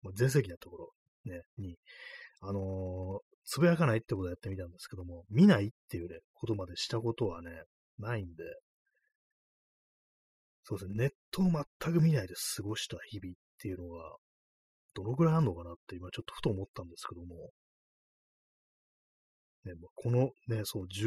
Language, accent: Japanese, native